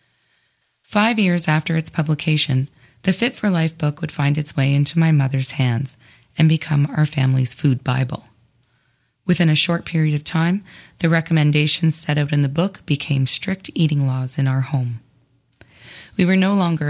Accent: American